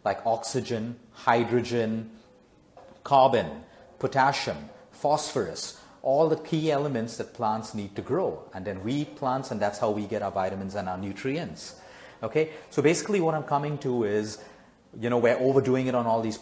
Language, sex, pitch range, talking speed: English, male, 105-130 Hz, 170 wpm